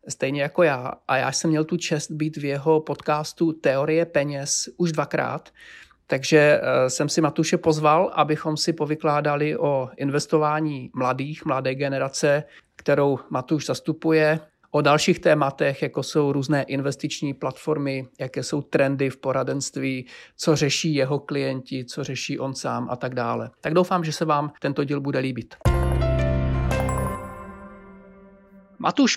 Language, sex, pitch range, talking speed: Czech, male, 140-165 Hz, 140 wpm